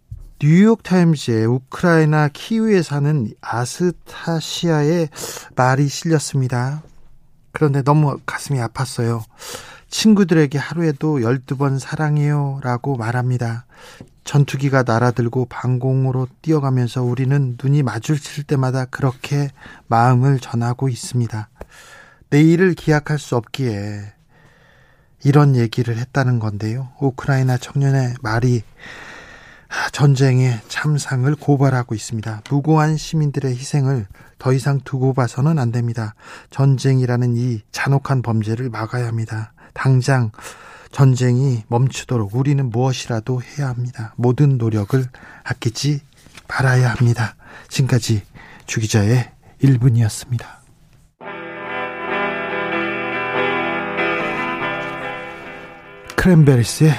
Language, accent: Korean, native